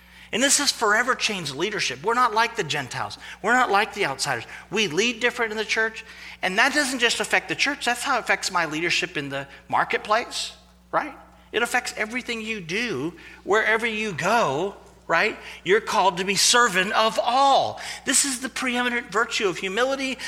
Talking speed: 185 wpm